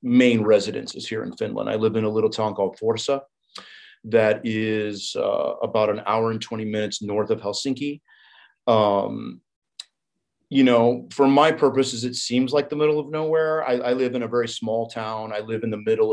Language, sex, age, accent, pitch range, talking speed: English, male, 40-59, American, 100-125 Hz, 190 wpm